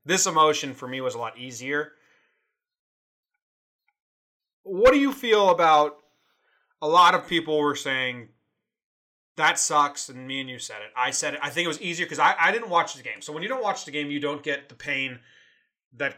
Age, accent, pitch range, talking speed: 30-49, American, 125-160 Hz, 205 wpm